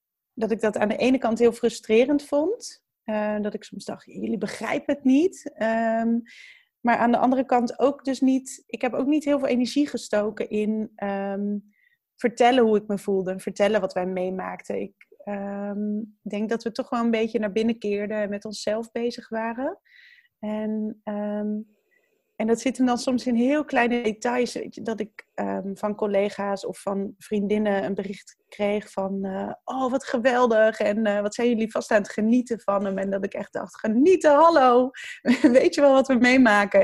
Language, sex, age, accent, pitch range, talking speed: Dutch, female, 30-49, Dutch, 205-255 Hz, 180 wpm